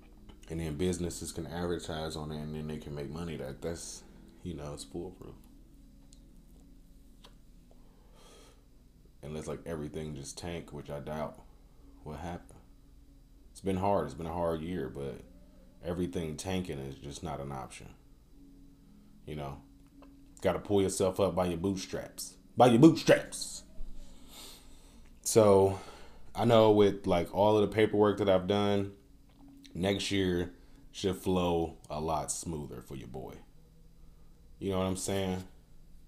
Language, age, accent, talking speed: English, 20-39, American, 140 wpm